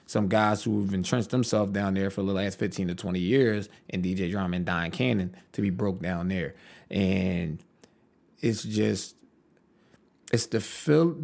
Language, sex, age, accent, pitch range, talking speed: English, male, 20-39, American, 100-130 Hz, 170 wpm